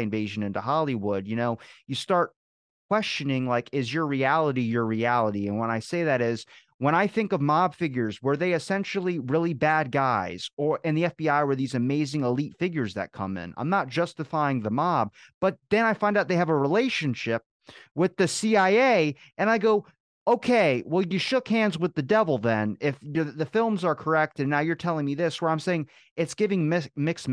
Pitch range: 115-160 Hz